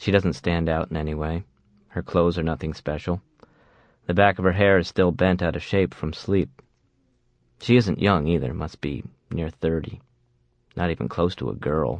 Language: English